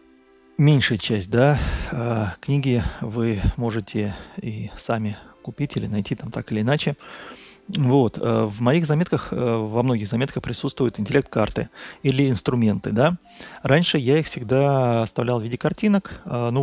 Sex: male